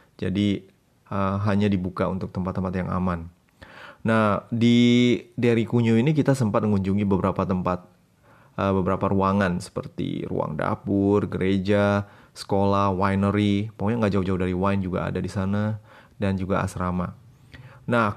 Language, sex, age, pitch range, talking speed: Indonesian, male, 20-39, 95-110 Hz, 130 wpm